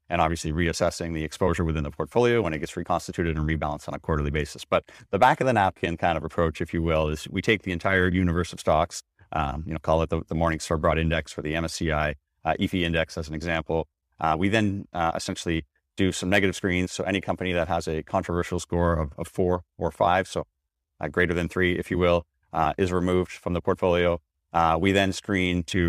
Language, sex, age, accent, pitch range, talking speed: English, male, 30-49, American, 80-95 Hz, 230 wpm